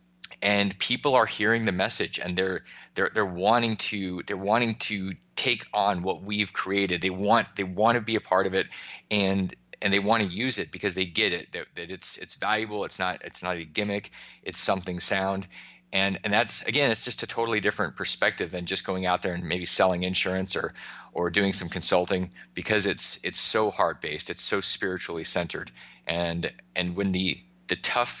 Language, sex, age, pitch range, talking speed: English, male, 30-49, 90-115 Hz, 200 wpm